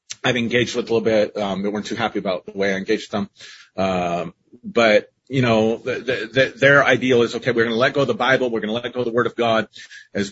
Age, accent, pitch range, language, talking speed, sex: 40-59, American, 105-135 Hz, English, 255 wpm, male